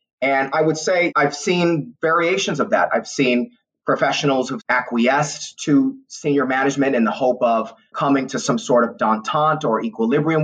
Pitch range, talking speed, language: 120-160 Hz, 165 wpm, English